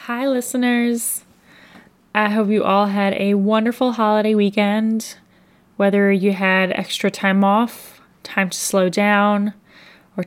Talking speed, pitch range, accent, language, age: 130 wpm, 185-210 Hz, American, English, 10-29